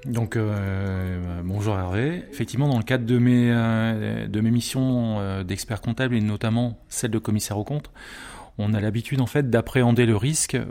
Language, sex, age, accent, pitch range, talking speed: French, male, 30-49, French, 100-125 Hz, 170 wpm